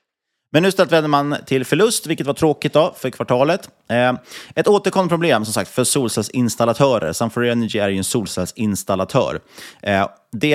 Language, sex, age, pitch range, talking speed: Swedish, male, 30-49, 105-135 Hz, 130 wpm